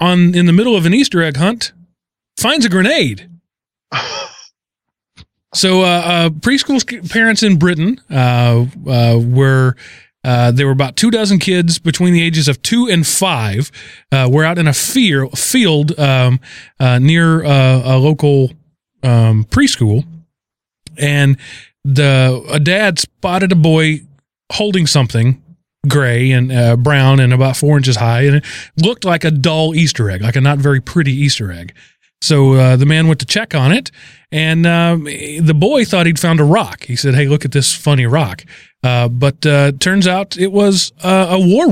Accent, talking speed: American, 175 wpm